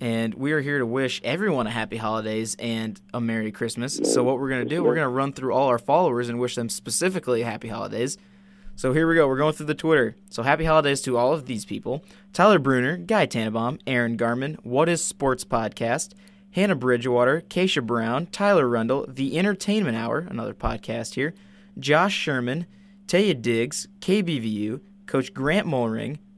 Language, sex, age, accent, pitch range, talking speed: English, male, 20-39, American, 120-195 Hz, 185 wpm